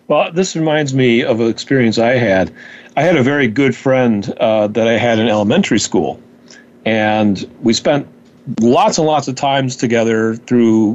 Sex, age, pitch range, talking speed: male, 40-59, 125-170 Hz, 175 wpm